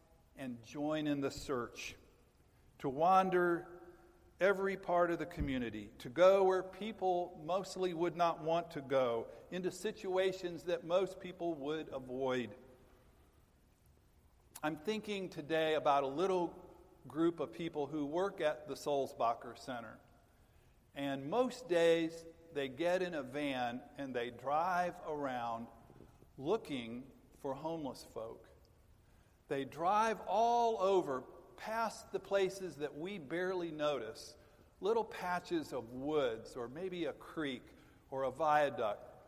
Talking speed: 125 wpm